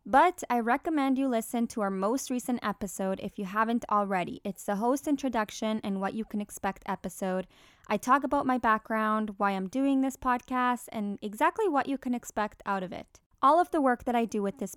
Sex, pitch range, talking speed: female, 200-255 Hz, 210 wpm